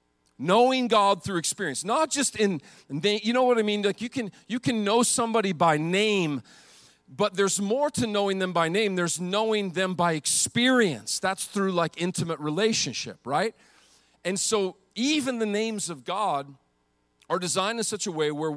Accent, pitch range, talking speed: American, 150-205 Hz, 175 wpm